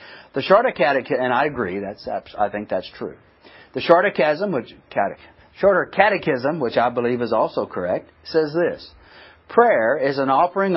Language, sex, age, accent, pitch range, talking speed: English, male, 50-69, American, 115-160 Hz, 165 wpm